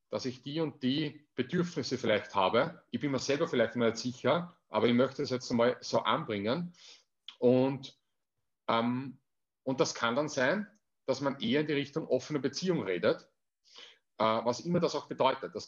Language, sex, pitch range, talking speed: German, male, 125-155 Hz, 170 wpm